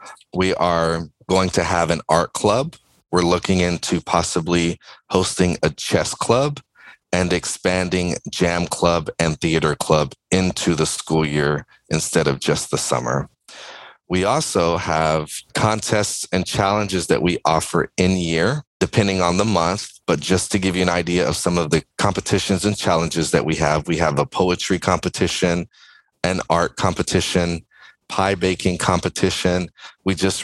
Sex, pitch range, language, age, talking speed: male, 80-95 Hz, English, 30-49, 150 wpm